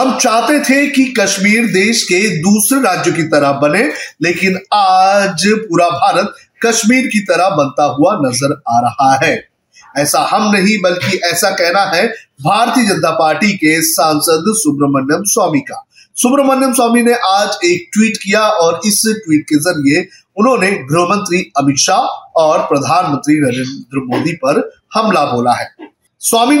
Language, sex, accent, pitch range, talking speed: Hindi, male, native, 155-230 Hz, 145 wpm